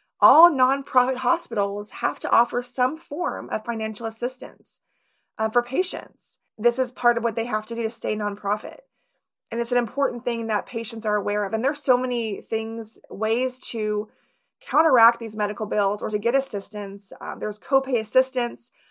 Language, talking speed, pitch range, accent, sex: English, 175 wpm, 220-255 Hz, American, female